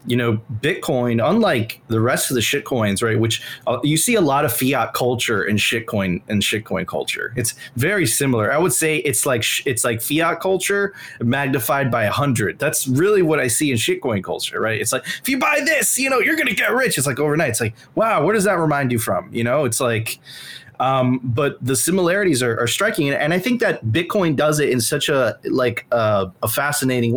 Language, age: English, 20-39